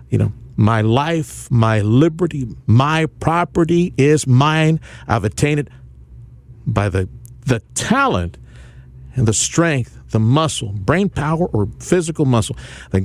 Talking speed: 130 wpm